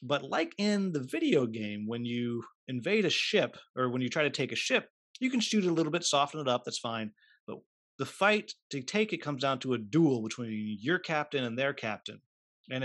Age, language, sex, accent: 30-49, English, male, American